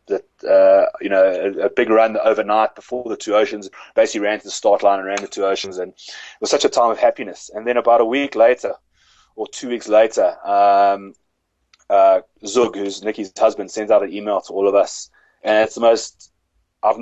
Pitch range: 95-110 Hz